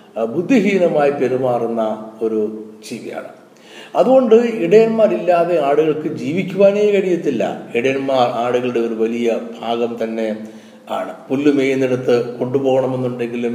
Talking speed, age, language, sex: 80 wpm, 60-79, Malayalam, male